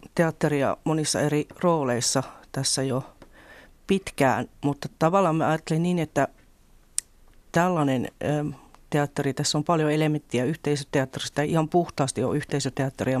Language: Finnish